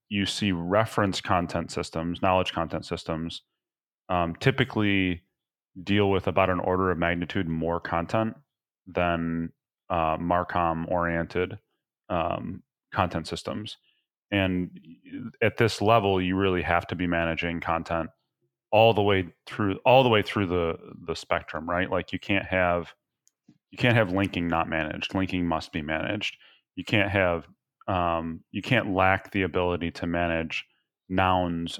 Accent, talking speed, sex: American, 140 wpm, male